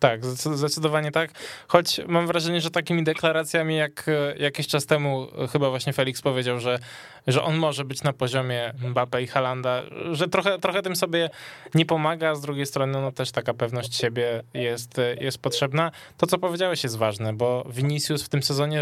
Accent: native